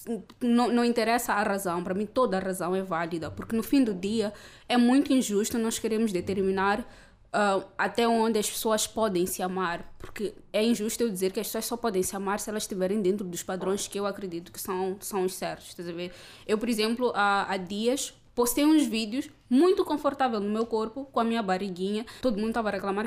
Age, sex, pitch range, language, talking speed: 20-39, female, 195-245 Hz, Portuguese, 210 wpm